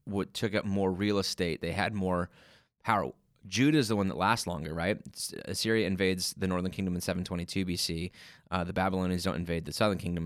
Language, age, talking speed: English, 20-39, 195 wpm